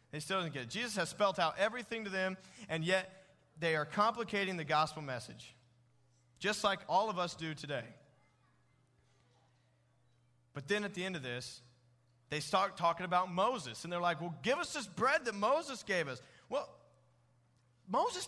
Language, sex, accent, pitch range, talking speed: English, male, American, 145-210 Hz, 175 wpm